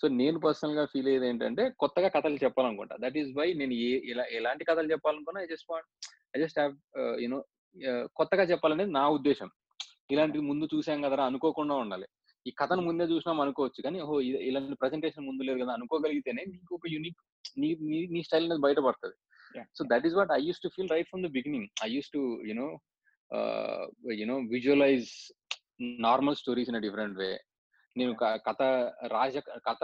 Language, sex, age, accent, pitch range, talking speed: Telugu, male, 20-39, native, 125-160 Hz, 155 wpm